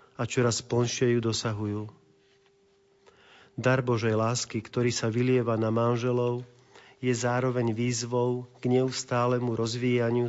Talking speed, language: 110 wpm, Slovak